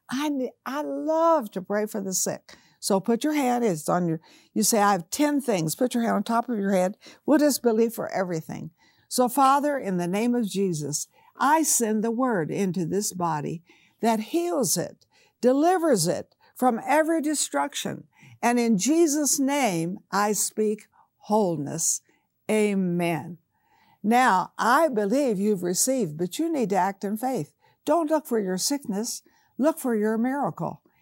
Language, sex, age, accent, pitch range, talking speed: English, female, 60-79, American, 195-275 Hz, 165 wpm